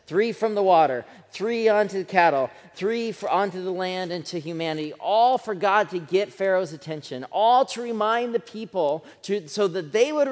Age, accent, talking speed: 40-59, American, 190 wpm